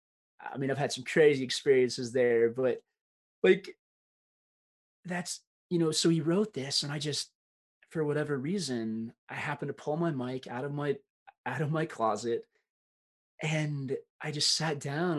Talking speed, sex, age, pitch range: 160 wpm, male, 20-39, 140-235 Hz